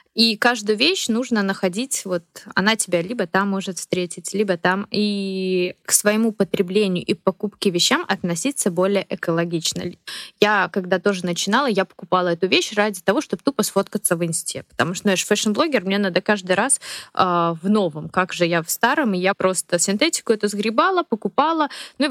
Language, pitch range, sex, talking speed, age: Russian, 180-220 Hz, female, 170 wpm, 20-39